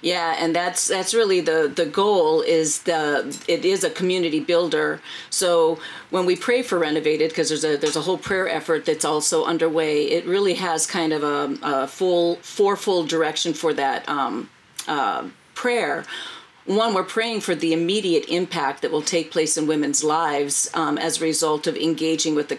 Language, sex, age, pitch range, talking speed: English, female, 40-59, 160-200 Hz, 185 wpm